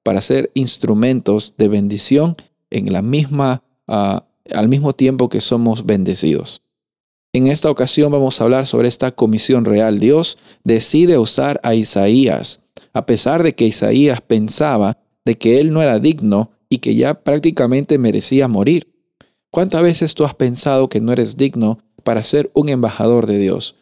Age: 40-59